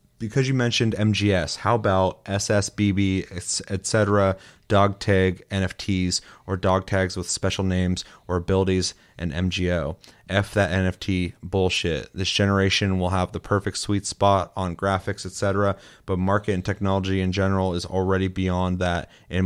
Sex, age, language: male, 30-49, English